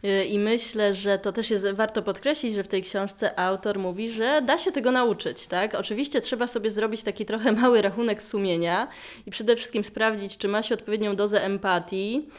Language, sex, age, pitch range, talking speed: Polish, female, 20-39, 185-220 Hz, 190 wpm